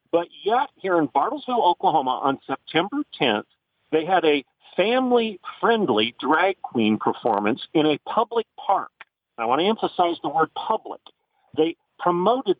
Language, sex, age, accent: English, male, 50-69, American